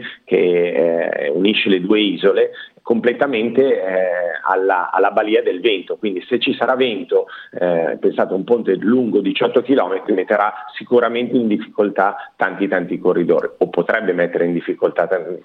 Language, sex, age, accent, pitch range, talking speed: Italian, male, 40-59, native, 105-140 Hz, 150 wpm